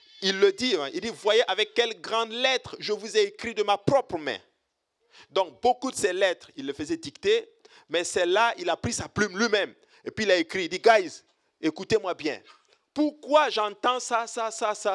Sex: male